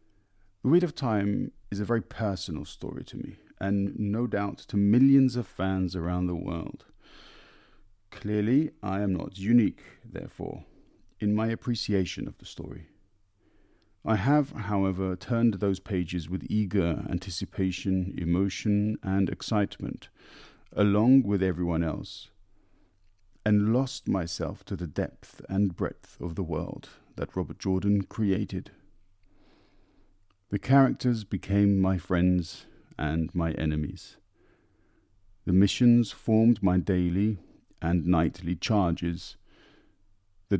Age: 40-59